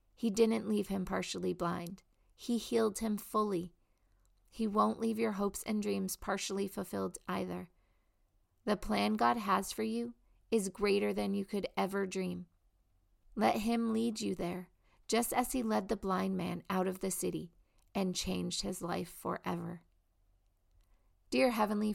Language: English